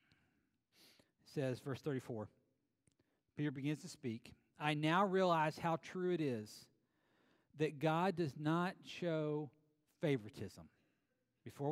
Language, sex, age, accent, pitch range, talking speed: English, male, 50-69, American, 135-180 Hz, 110 wpm